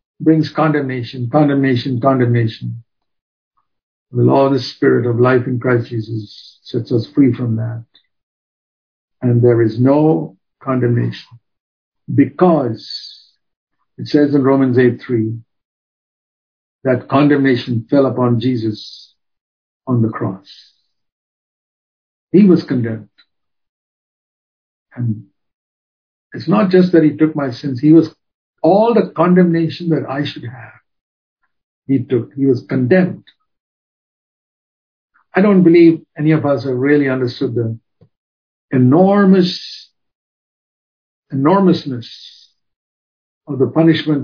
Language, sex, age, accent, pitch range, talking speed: English, male, 60-79, Indian, 120-155 Hz, 105 wpm